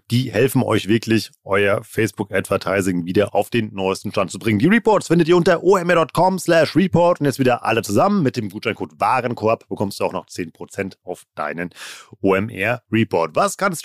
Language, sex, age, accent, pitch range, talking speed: German, male, 30-49, German, 115-150 Hz, 170 wpm